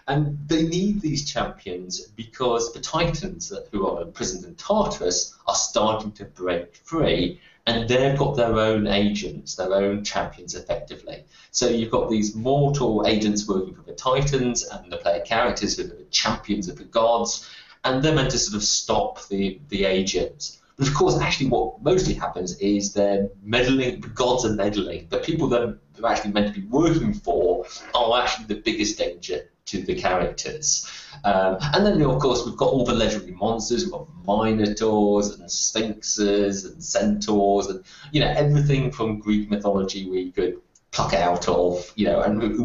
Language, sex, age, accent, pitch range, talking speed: English, male, 30-49, British, 100-145 Hz, 175 wpm